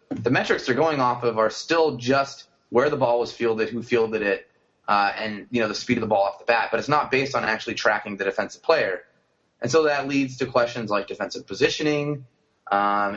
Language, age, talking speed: English, 30-49, 225 wpm